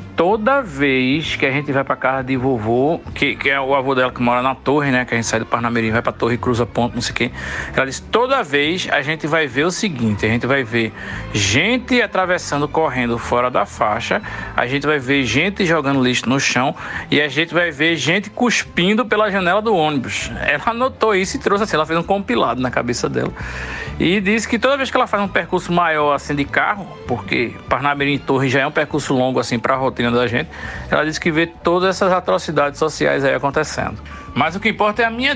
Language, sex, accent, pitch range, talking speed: Portuguese, male, Brazilian, 125-200 Hz, 235 wpm